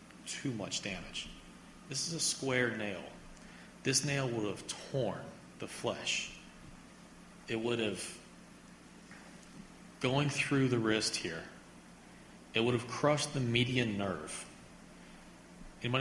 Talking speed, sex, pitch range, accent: 115 wpm, male, 100-130 Hz, American